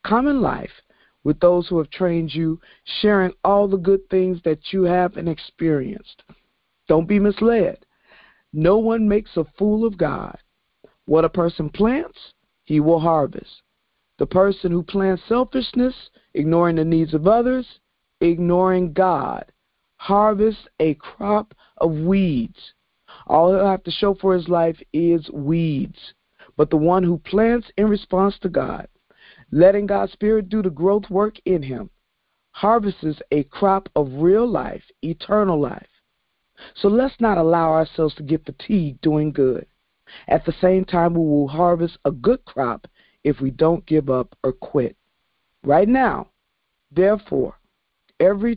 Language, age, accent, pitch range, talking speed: English, 50-69, American, 160-200 Hz, 145 wpm